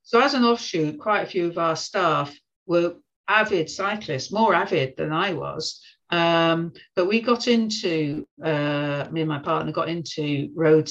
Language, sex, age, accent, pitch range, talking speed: English, female, 50-69, British, 150-185 Hz, 170 wpm